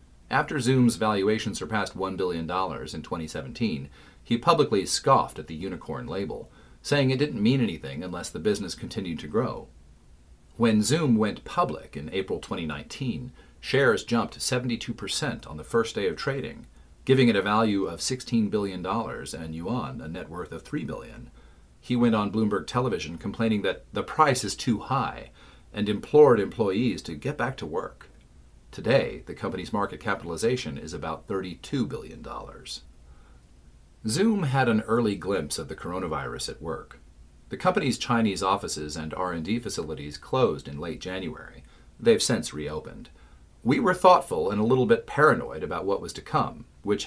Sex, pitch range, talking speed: male, 75-115 Hz, 160 wpm